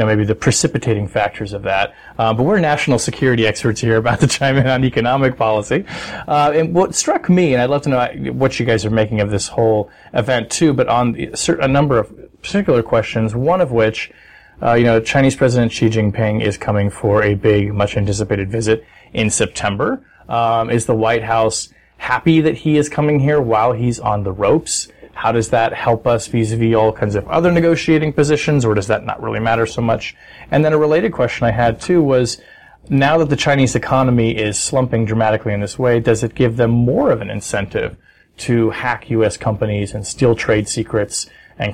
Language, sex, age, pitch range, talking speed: English, male, 30-49, 110-135 Hz, 205 wpm